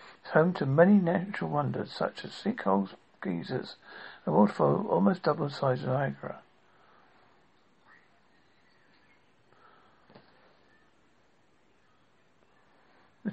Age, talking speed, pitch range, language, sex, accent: 60-79, 80 wpm, 145-205 Hz, English, male, British